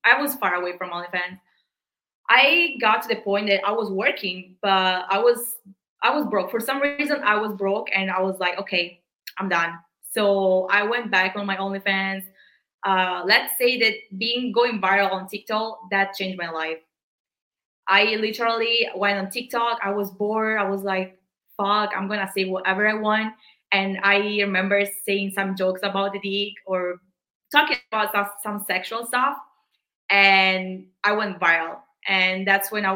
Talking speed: 175 wpm